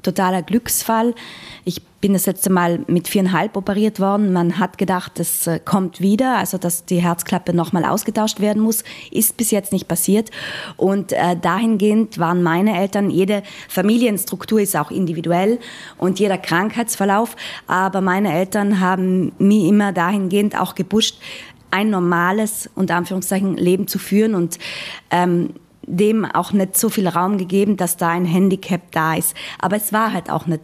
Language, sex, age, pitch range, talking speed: German, female, 20-39, 175-210 Hz, 160 wpm